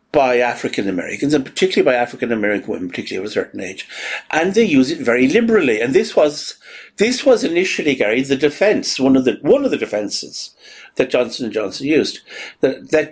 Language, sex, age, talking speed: English, male, 60-79, 195 wpm